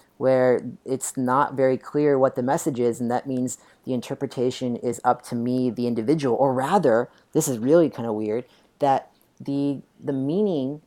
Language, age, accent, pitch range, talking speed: English, 30-49, American, 125-145 Hz, 175 wpm